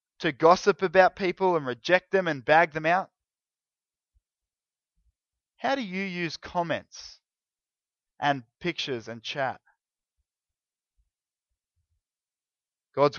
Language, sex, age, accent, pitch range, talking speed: English, male, 20-39, Australian, 130-180 Hz, 95 wpm